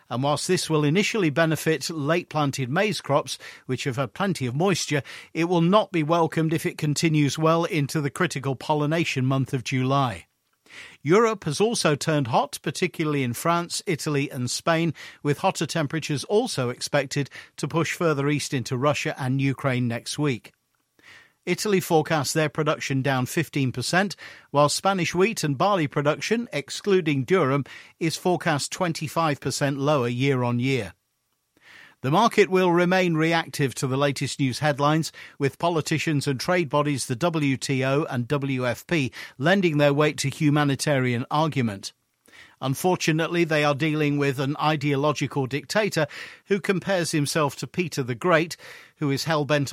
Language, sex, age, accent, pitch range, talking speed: English, male, 50-69, British, 135-165 Hz, 145 wpm